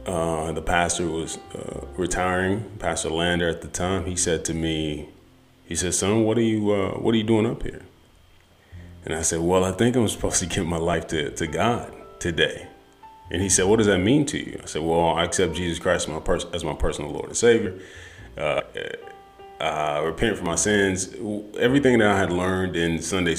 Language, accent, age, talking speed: English, American, 30-49, 210 wpm